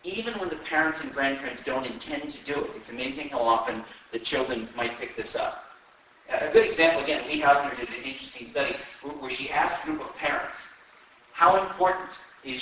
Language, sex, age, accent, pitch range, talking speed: English, male, 50-69, American, 140-190 Hz, 200 wpm